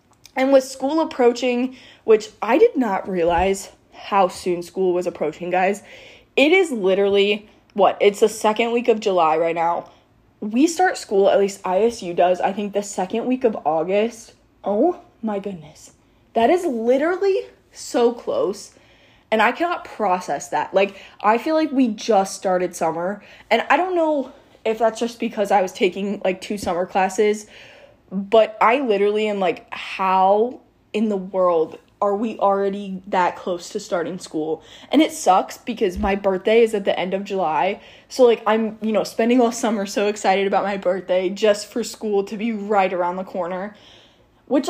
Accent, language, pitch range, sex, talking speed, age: American, English, 190-240 Hz, female, 175 wpm, 10-29